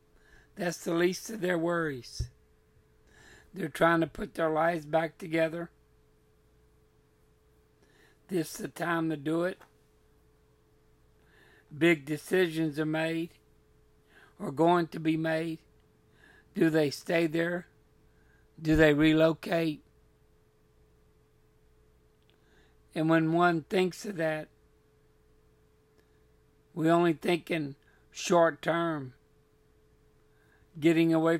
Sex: male